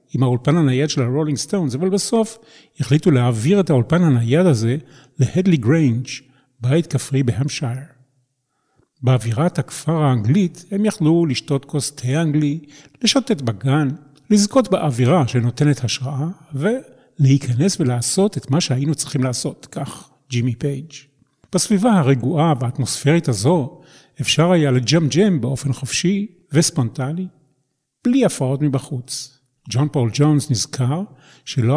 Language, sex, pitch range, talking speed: Hebrew, male, 130-175 Hz, 115 wpm